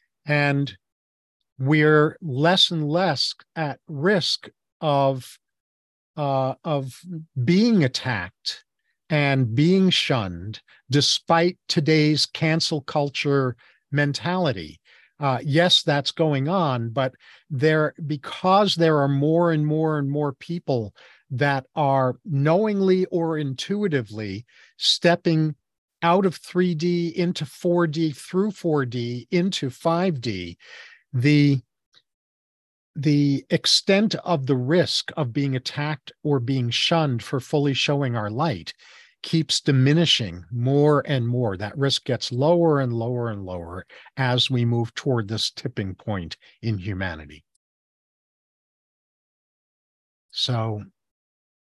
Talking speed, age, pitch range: 105 wpm, 50-69, 125-165 Hz